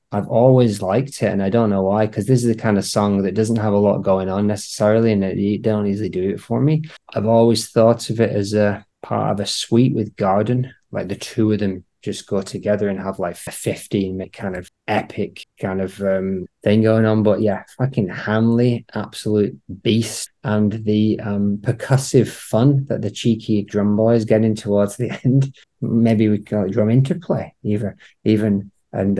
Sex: male